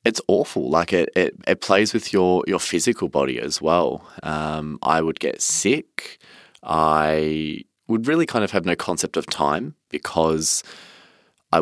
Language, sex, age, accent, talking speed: English, male, 20-39, Australian, 160 wpm